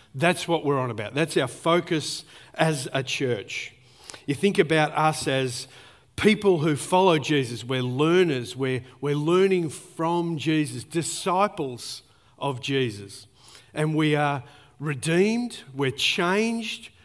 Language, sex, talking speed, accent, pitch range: English, male, 125 wpm, Australian, 130-170 Hz